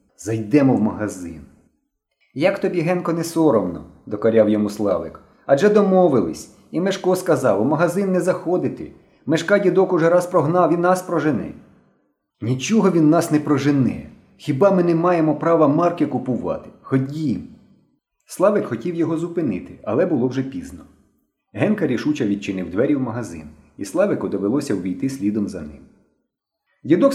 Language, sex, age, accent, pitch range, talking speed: Ukrainian, male, 30-49, native, 105-165 Hz, 140 wpm